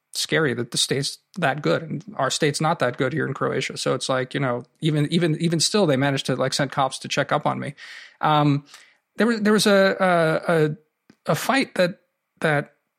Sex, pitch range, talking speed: male, 135-165 Hz, 215 wpm